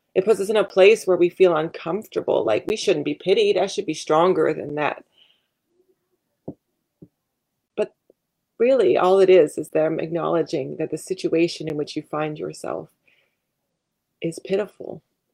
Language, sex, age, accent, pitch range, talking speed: English, female, 30-49, American, 160-195 Hz, 155 wpm